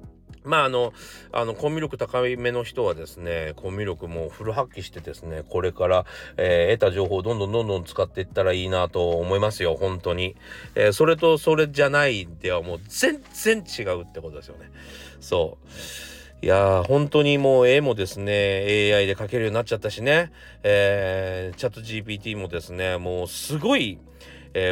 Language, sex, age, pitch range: Japanese, male, 40-59, 90-150 Hz